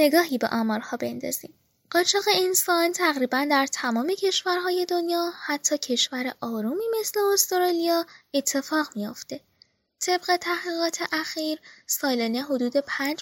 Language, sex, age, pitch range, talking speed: Persian, female, 10-29, 255-340 Hz, 110 wpm